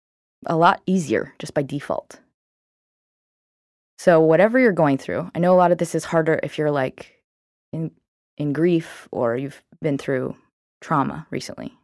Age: 20-39